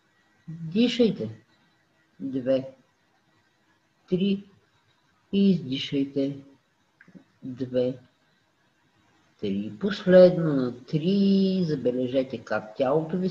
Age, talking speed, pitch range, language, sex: 50-69, 60 wpm, 135-185 Hz, Bulgarian, female